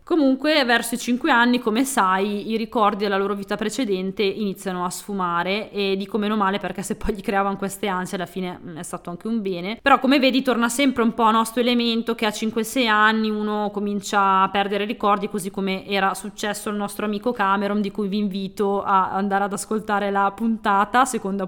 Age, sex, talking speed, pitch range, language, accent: 20-39, female, 200 wpm, 195-230 Hz, Italian, native